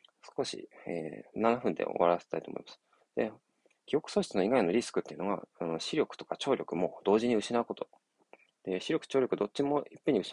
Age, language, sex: 20-39, Japanese, male